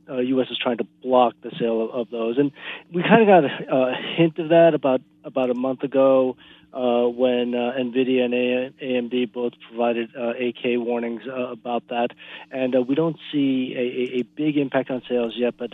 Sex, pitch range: male, 120-135 Hz